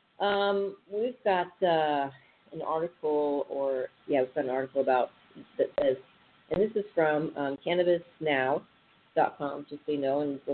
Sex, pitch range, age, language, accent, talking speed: female, 140-175 Hz, 40-59, English, American, 155 wpm